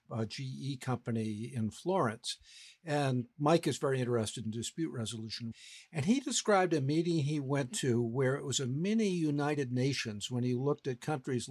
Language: English